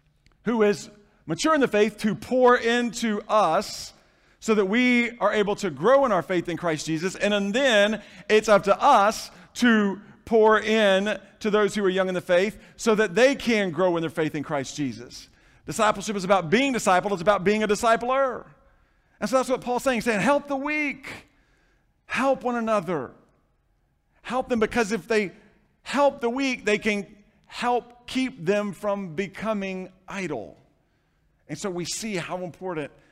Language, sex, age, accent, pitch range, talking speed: English, male, 40-59, American, 175-235 Hz, 175 wpm